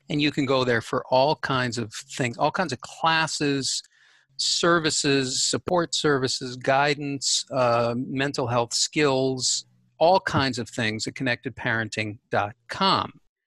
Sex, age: male, 50-69